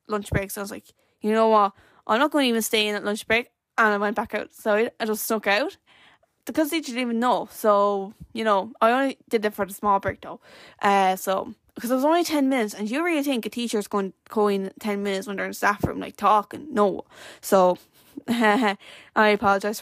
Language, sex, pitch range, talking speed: English, female, 200-235 Hz, 235 wpm